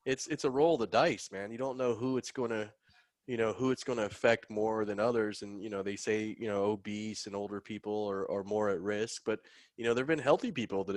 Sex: male